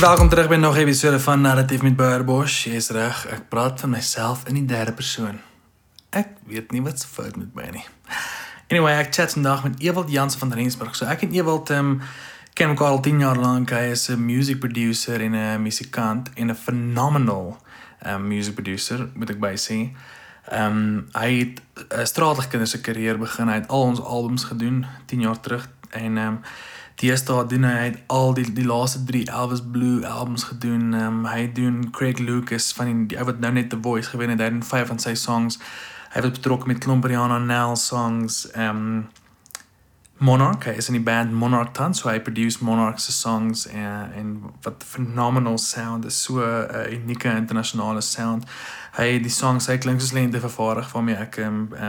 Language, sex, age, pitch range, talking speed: English, male, 20-39, 115-130 Hz, 185 wpm